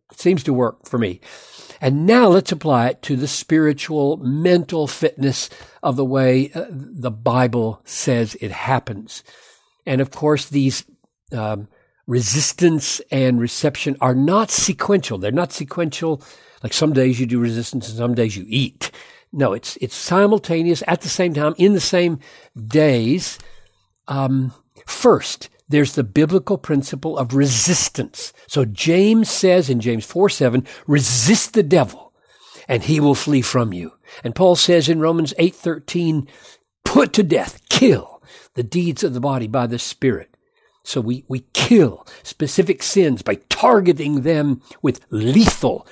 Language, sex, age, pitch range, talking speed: English, male, 60-79, 130-170 Hz, 150 wpm